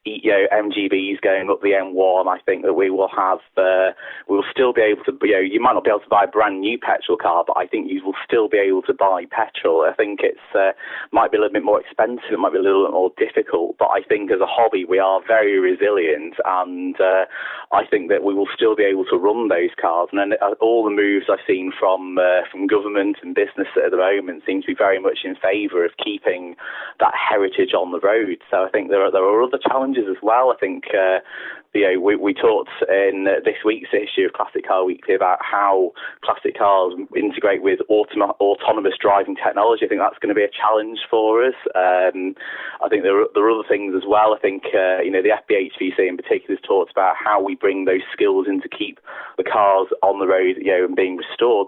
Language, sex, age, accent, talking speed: English, male, 30-49, British, 240 wpm